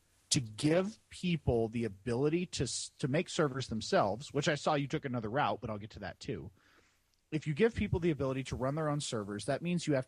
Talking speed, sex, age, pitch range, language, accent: 225 wpm, male, 40-59, 105-155 Hz, English, American